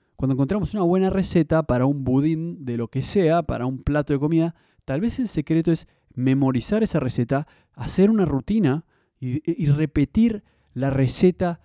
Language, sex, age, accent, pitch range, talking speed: Spanish, male, 20-39, Argentinian, 130-175 Hz, 170 wpm